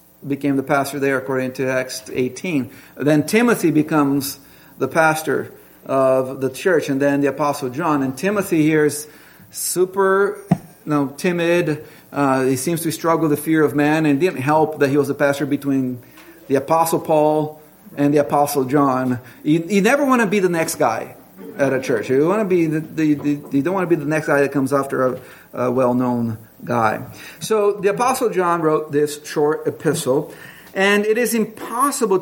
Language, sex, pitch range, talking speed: English, male, 140-180 Hz, 190 wpm